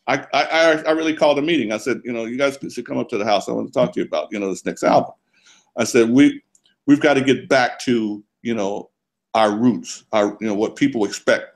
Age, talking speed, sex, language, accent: 60-79, 265 wpm, male, English, American